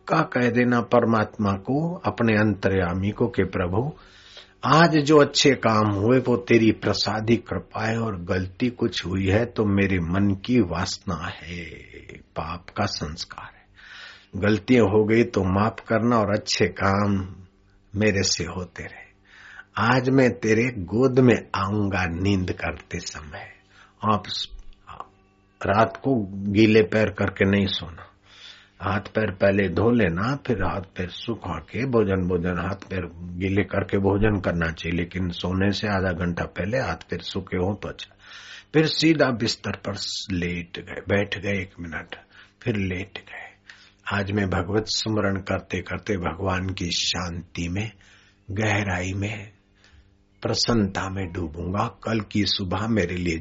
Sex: male